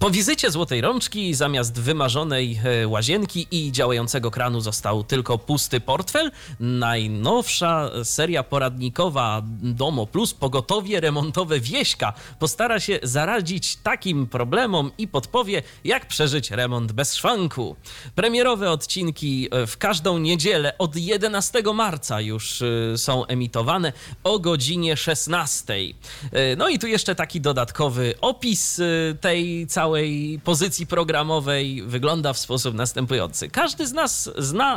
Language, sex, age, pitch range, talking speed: Polish, male, 30-49, 125-180 Hz, 115 wpm